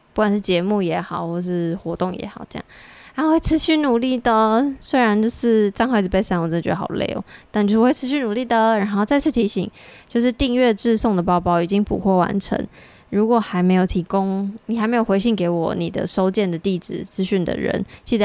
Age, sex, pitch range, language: 20-39, female, 185-230 Hz, Chinese